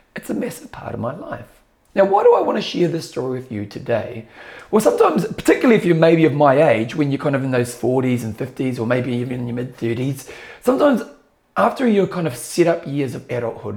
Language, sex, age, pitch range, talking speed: English, male, 40-59, 130-190 Hz, 225 wpm